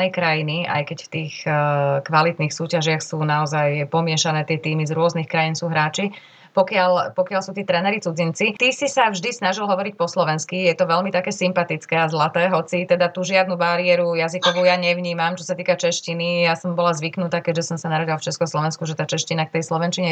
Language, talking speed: Slovak, 200 wpm